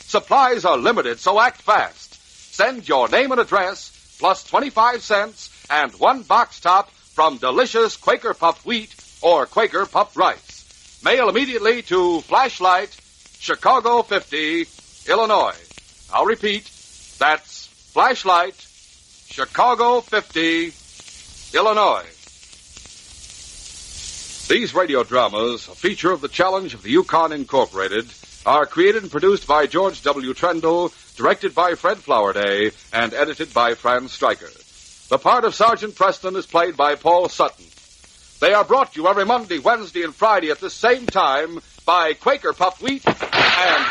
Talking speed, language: 135 wpm, English